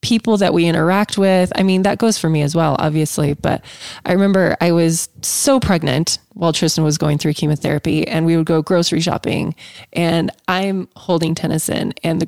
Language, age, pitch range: English, 20-39, 160-195 Hz